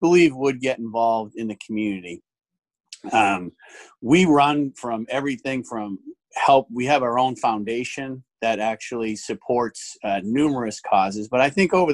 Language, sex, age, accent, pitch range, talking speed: English, male, 40-59, American, 110-130 Hz, 145 wpm